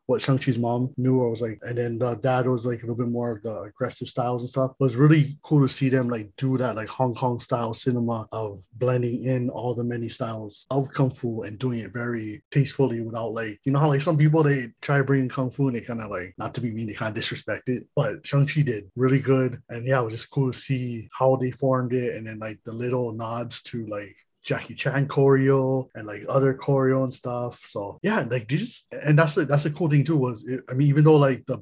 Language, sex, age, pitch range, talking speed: English, male, 20-39, 115-135 Hz, 255 wpm